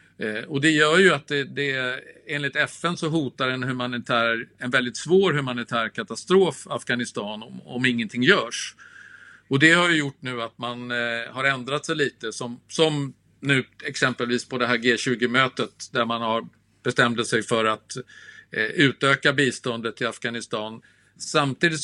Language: Swedish